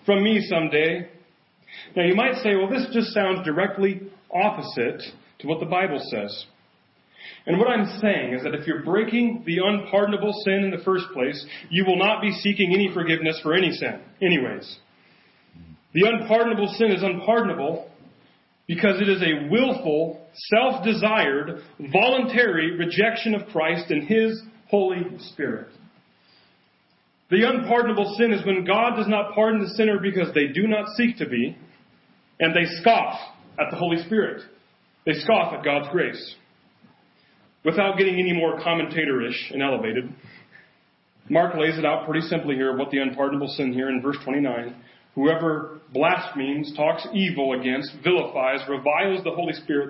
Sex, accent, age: male, American, 40-59